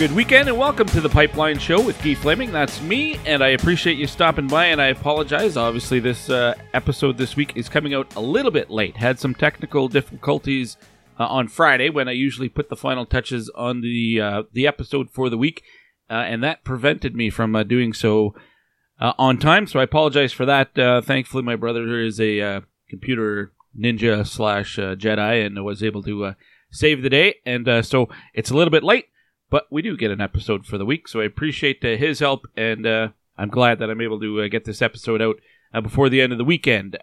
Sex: male